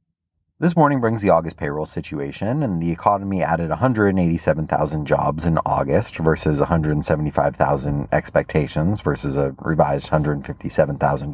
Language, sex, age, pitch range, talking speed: English, male, 30-49, 80-95 Hz, 115 wpm